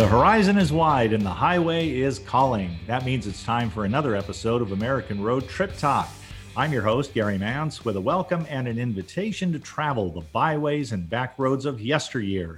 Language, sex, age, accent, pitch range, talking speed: English, male, 50-69, American, 105-145 Hz, 190 wpm